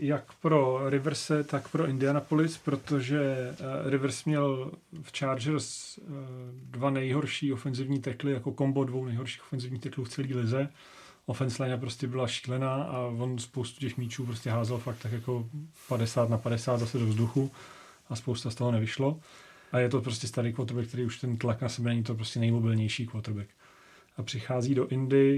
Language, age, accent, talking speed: Czech, 30-49, native, 170 wpm